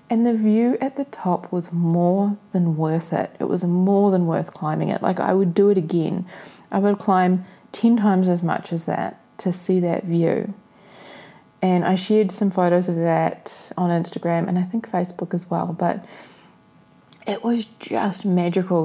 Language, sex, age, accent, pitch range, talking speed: English, female, 30-49, Australian, 180-220 Hz, 180 wpm